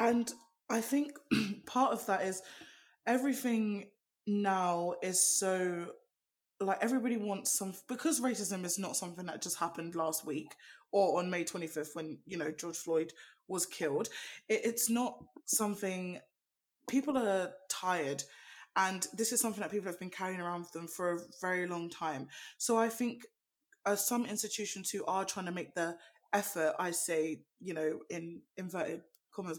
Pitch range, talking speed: 180-220 Hz, 160 wpm